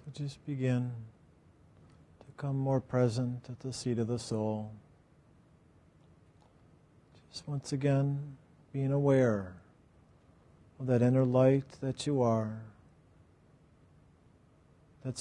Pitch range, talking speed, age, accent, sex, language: 120-140 Hz, 105 wpm, 50-69, American, male, English